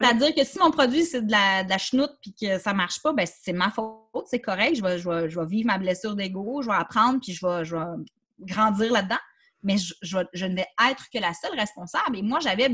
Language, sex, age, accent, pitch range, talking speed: French, female, 30-49, Canadian, 200-270 Hz, 275 wpm